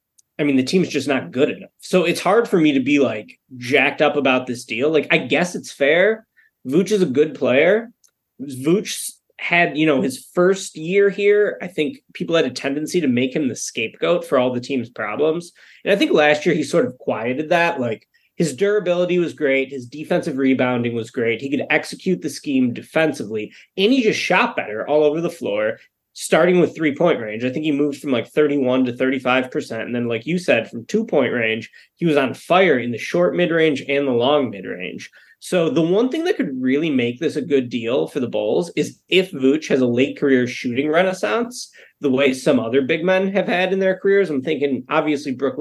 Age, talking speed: 20-39, 215 wpm